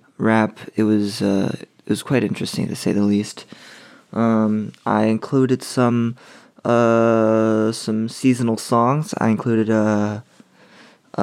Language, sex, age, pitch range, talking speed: English, male, 20-39, 110-130 Hz, 125 wpm